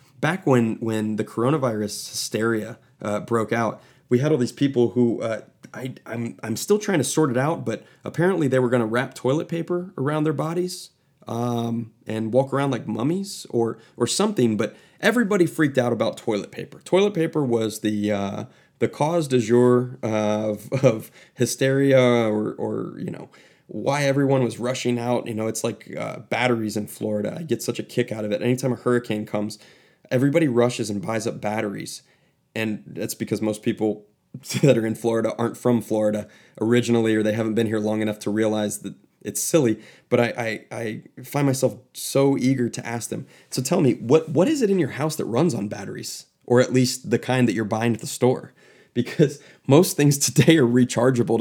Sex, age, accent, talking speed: male, 30-49, American, 195 wpm